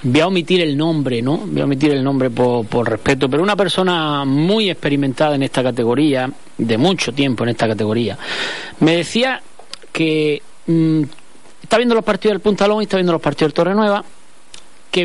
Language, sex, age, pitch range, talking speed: Spanish, male, 40-59, 135-190 Hz, 185 wpm